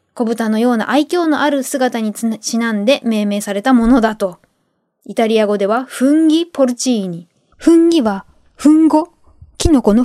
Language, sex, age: Japanese, female, 20-39